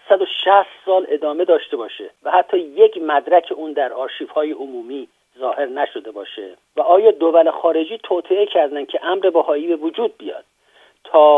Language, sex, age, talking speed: Persian, male, 50-69, 155 wpm